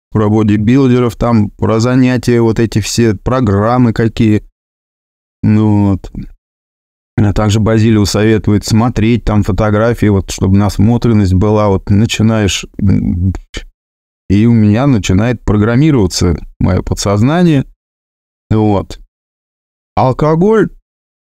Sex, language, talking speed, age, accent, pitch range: male, Russian, 80 wpm, 20-39, native, 95-120 Hz